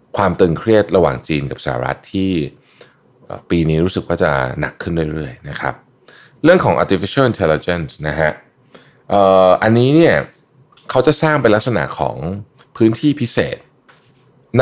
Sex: male